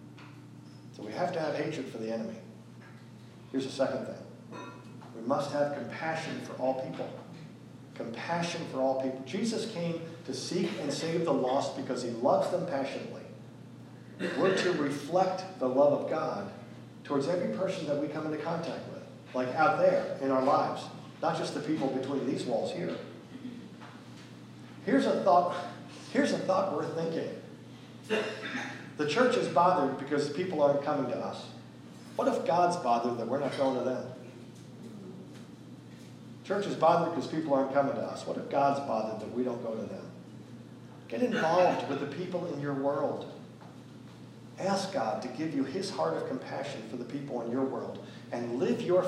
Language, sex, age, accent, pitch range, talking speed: English, male, 50-69, American, 125-160 Hz, 175 wpm